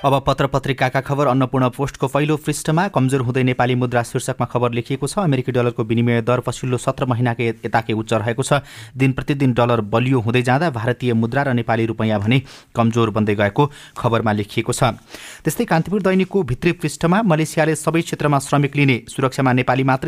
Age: 30-49